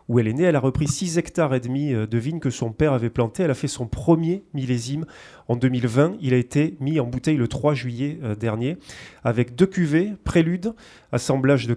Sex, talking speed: male, 215 wpm